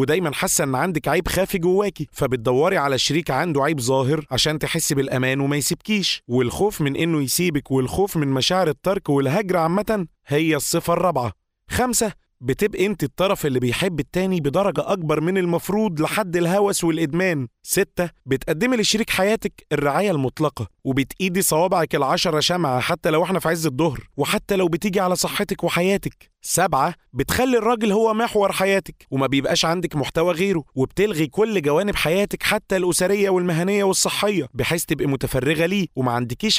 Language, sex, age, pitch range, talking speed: Arabic, male, 30-49, 140-190 Hz, 150 wpm